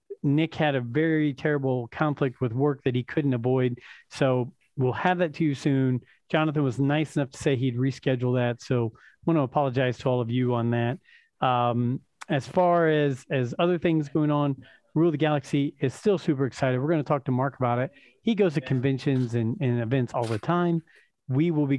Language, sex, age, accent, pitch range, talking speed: English, male, 40-59, American, 125-155 Hz, 210 wpm